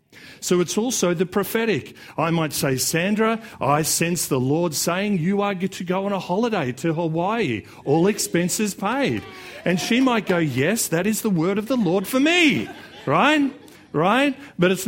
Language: English